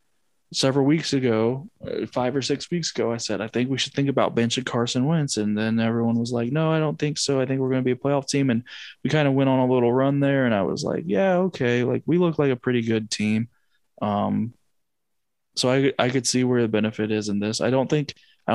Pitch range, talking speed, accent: 110-135 Hz, 250 wpm, American